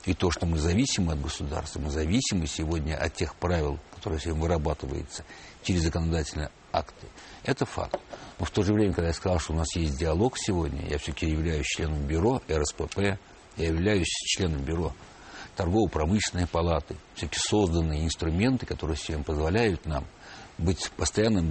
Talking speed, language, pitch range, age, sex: 160 wpm, Russian, 80-95 Hz, 60-79, male